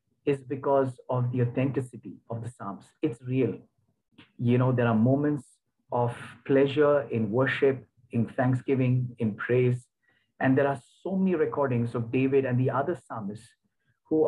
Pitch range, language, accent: 120-150 Hz, English, Indian